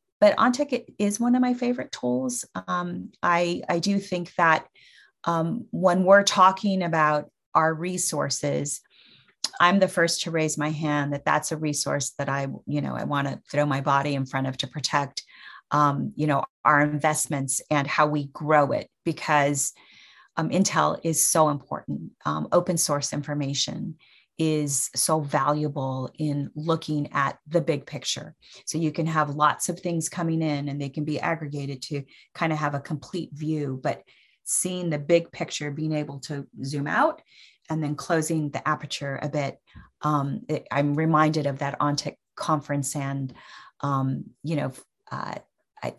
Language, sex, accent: English, female, American